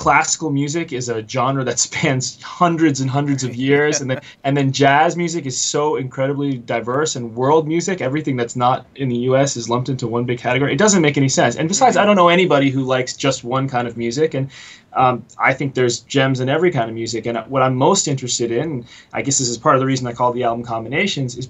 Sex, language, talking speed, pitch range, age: male, English, 240 wpm, 120-140 Hz, 20-39